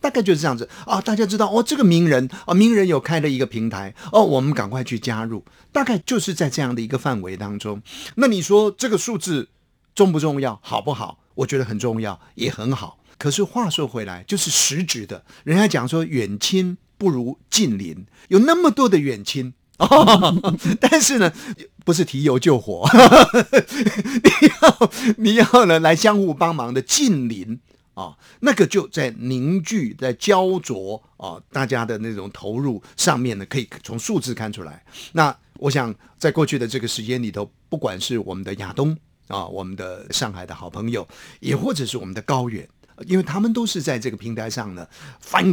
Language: Chinese